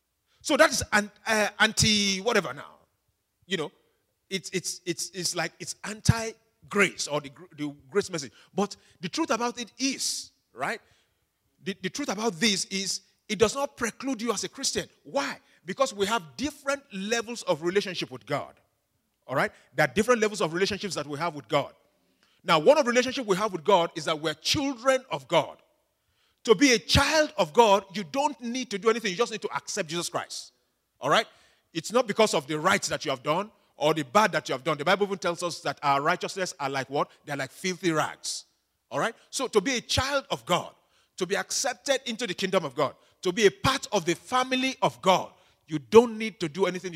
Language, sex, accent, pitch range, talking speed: English, male, Nigerian, 170-230 Hz, 210 wpm